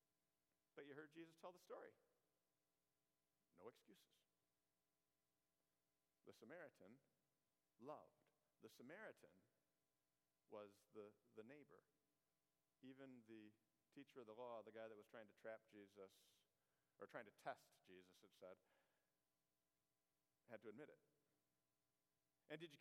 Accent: American